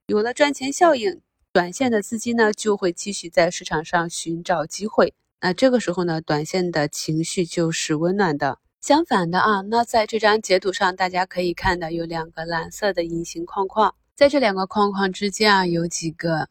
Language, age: Chinese, 20-39